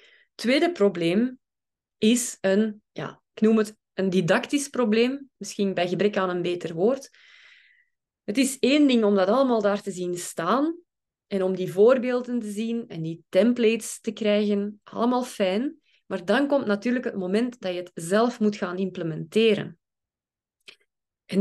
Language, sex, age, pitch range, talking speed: Dutch, female, 20-39, 190-235 Hz, 155 wpm